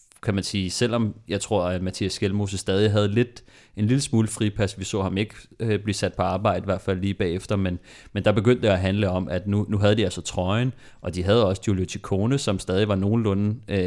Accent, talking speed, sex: native, 230 wpm, male